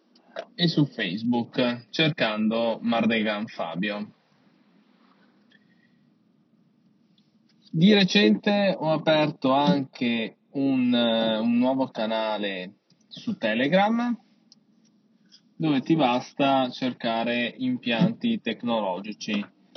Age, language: 20-39, Italian